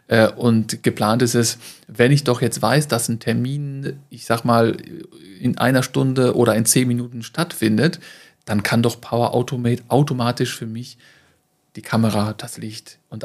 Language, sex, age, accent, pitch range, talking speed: German, male, 40-59, German, 110-125 Hz, 165 wpm